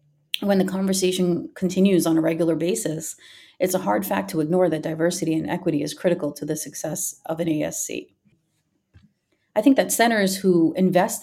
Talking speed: 170 wpm